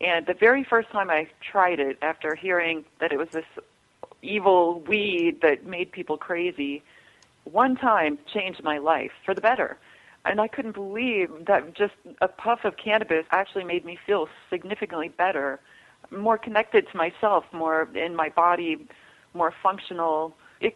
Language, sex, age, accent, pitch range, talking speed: English, female, 40-59, American, 160-200 Hz, 160 wpm